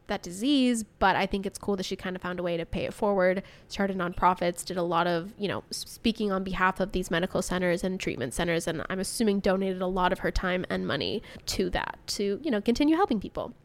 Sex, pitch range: female, 190-235 Hz